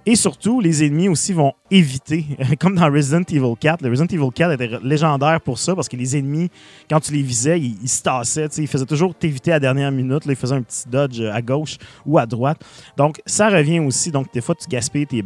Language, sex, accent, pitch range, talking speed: French, male, Canadian, 125-155 Hz, 240 wpm